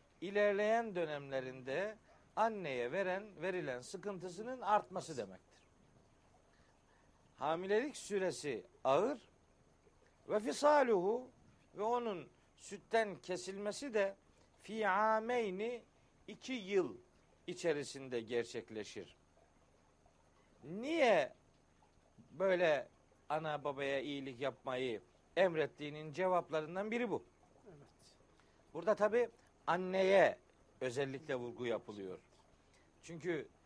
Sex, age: male, 60-79